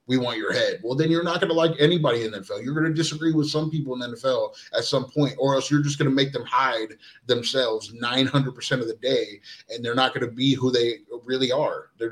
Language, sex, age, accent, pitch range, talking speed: English, male, 30-49, American, 120-145 Hz, 260 wpm